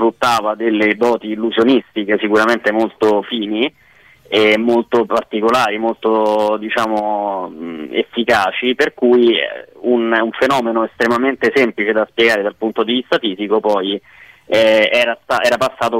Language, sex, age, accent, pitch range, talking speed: Italian, male, 20-39, native, 110-120 Hz, 125 wpm